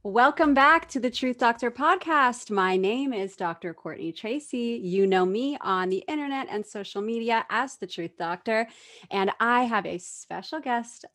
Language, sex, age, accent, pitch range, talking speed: English, female, 30-49, American, 185-255 Hz, 170 wpm